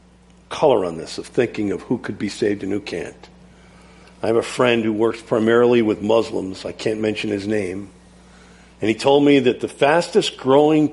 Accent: American